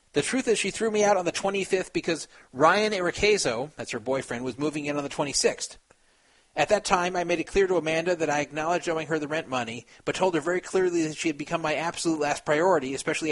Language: English